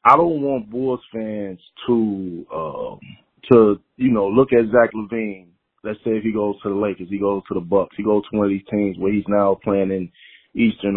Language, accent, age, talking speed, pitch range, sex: English, American, 30-49, 225 wpm, 100-130 Hz, male